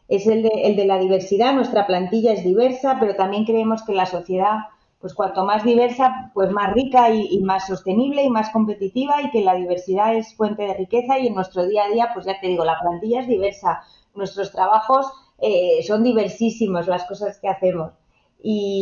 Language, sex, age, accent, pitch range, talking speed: Spanish, female, 30-49, Spanish, 185-245 Hz, 200 wpm